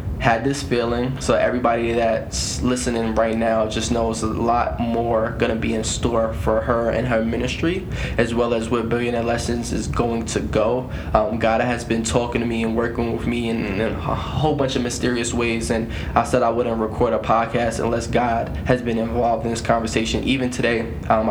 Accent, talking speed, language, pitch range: American, 205 wpm, English, 110-120 Hz